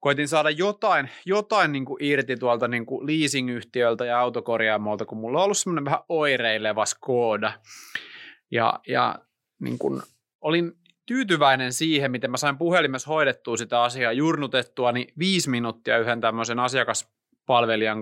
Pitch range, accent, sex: 120-165 Hz, native, male